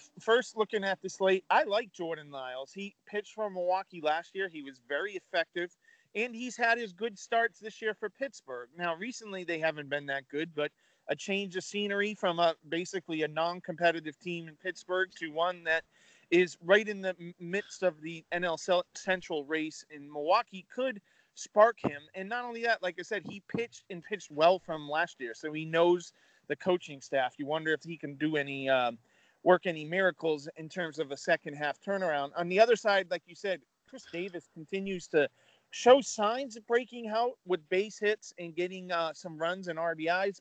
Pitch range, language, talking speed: 155-205 Hz, English, 195 wpm